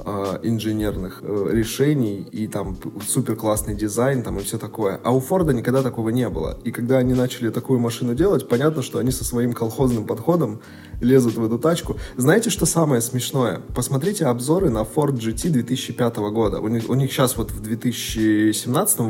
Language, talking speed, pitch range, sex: Russian, 165 wpm, 115-140 Hz, male